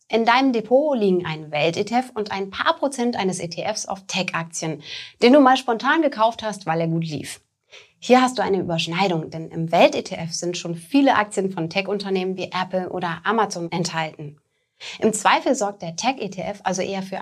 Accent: German